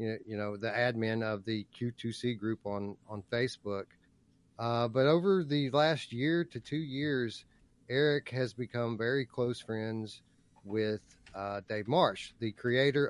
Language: English